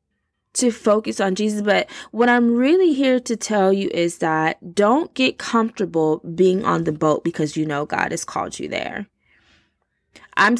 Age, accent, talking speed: 20-39, American, 170 wpm